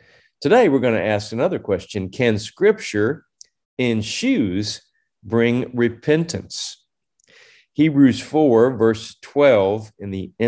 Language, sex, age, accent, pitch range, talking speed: English, male, 50-69, American, 105-140 Hz, 110 wpm